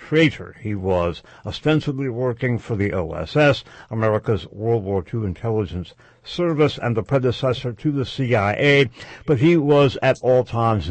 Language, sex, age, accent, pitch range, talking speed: English, male, 70-89, American, 105-140 Hz, 145 wpm